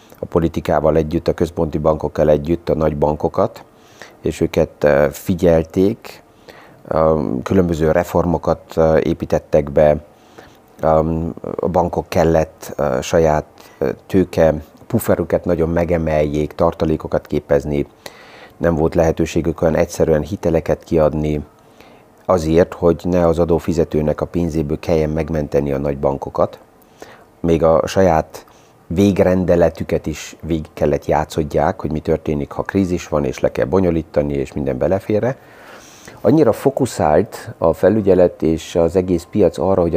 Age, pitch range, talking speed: 30-49, 75-85 Hz, 115 wpm